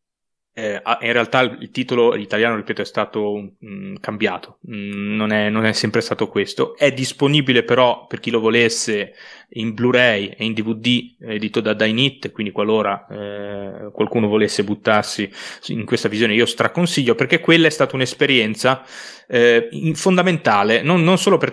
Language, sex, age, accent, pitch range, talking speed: Italian, male, 20-39, native, 110-135 Hz, 150 wpm